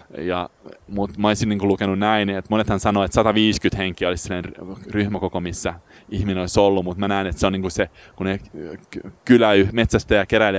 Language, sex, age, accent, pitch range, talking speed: Finnish, male, 20-39, native, 90-105 Hz, 180 wpm